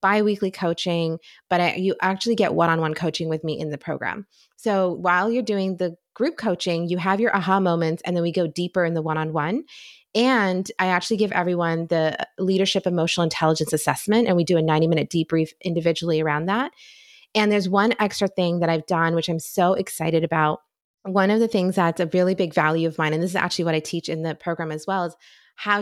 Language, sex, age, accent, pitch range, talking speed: English, female, 20-39, American, 165-195 Hz, 210 wpm